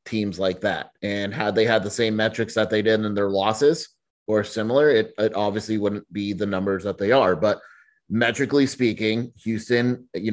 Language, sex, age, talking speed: English, male, 30-49, 190 wpm